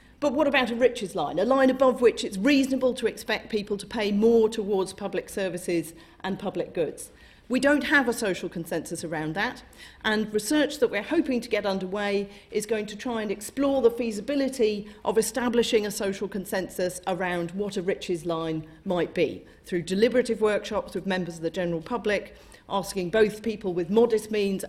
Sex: female